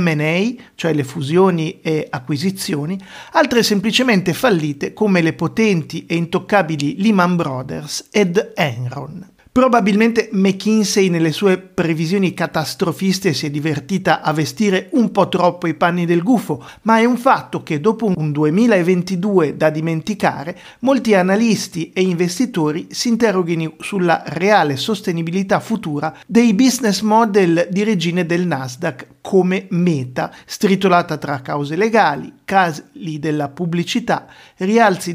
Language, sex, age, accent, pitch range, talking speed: Italian, male, 50-69, native, 160-205 Hz, 125 wpm